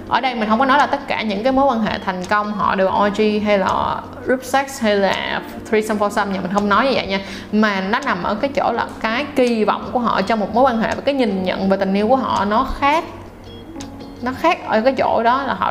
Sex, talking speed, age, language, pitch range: female, 265 wpm, 20-39, Vietnamese, 195-250 Hz